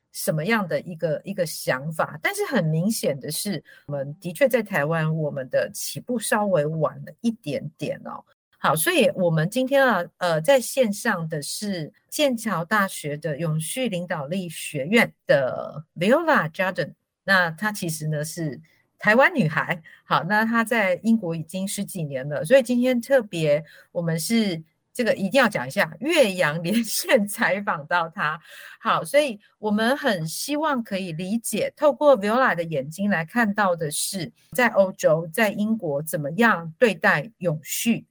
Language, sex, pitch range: Chinese, female, 165-240 Hz